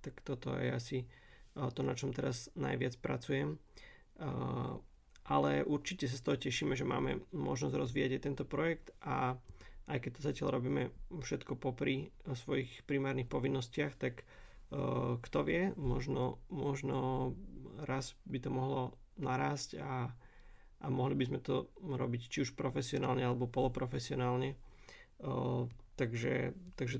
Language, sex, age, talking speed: Slovak, male, 30-49, 130 wpm